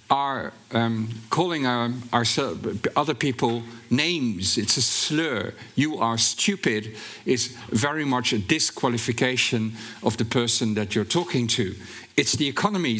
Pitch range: 115-150 Hz